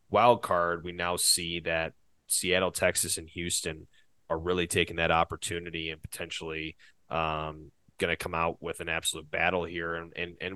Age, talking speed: 30-49, 170 wpm